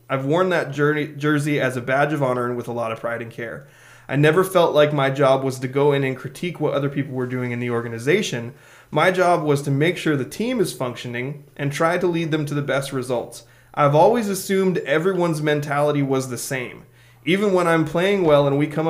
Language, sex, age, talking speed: English, male, 20-39, 230 wpm